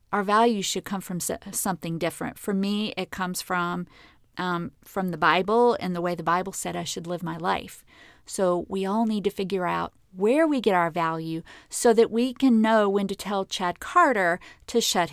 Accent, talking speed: American, 200 wpm